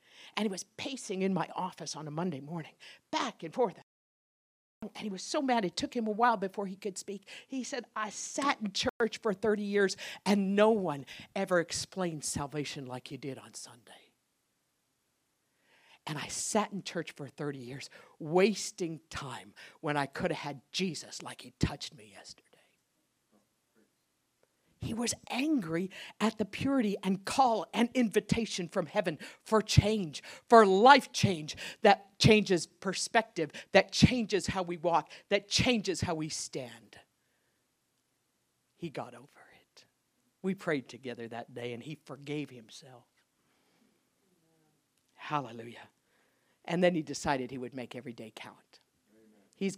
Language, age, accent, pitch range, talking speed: English, 50-69, American, 145-215 Hz, 150 wpm